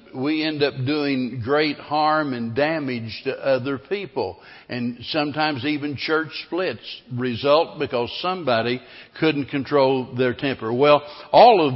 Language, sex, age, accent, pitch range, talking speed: English, male, 60-79, American, 125-145 Hz, 140 wpm